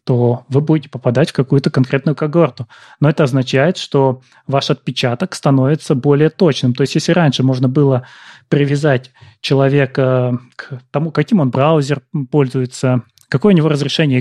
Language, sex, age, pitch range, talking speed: Russian, male, 30-49, 130-160 Hz, 150 wpm